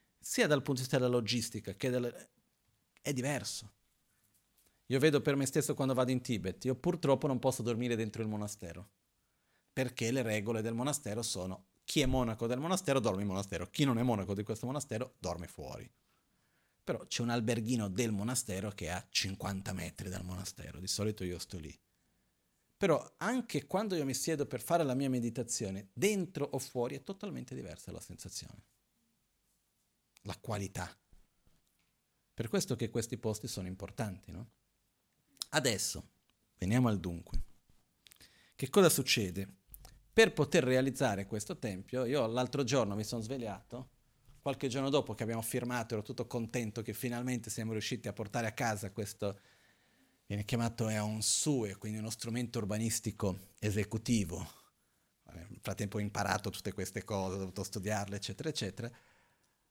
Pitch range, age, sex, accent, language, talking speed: 100-130 Hz, 40-59, male, native, Italian, 155 wpm